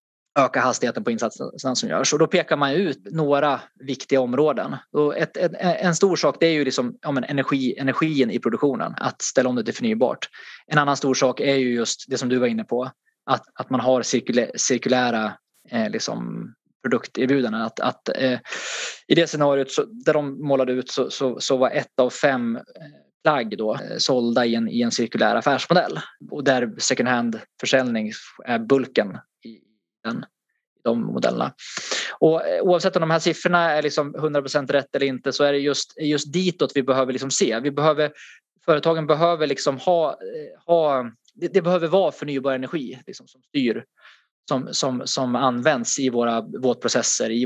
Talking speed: 175 wpm